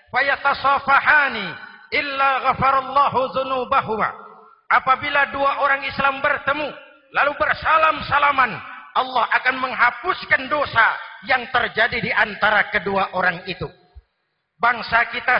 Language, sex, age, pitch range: Indonesian, male, 50-69, 245-280 Hz